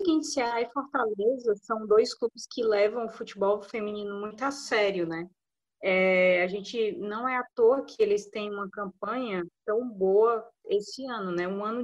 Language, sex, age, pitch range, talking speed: Portuguese, female, 20-39, 200-245 Hz, 180 wpm